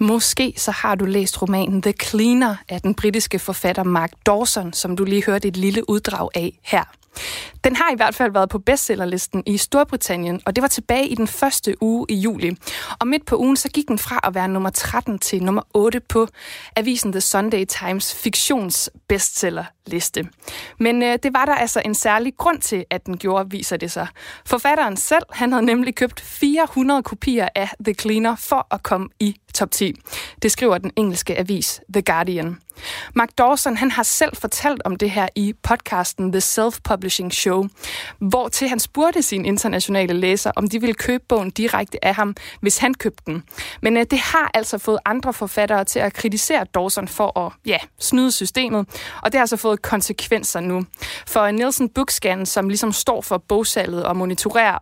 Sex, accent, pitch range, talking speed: female, native, 195-240 Hz, 185 wpm